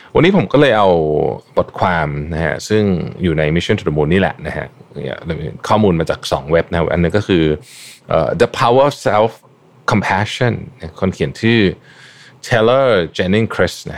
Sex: male